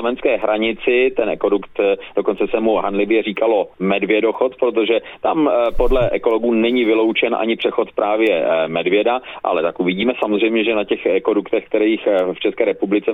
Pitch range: 105-155 Hz